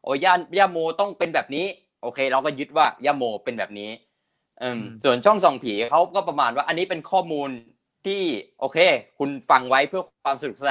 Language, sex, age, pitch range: Thai, male, 20-39, 130-175 Hz